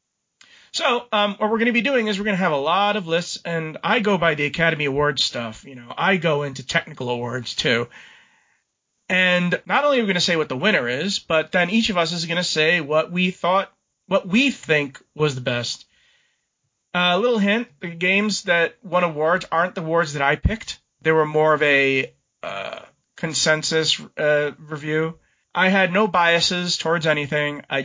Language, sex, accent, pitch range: English, male, American, 150-185 Hz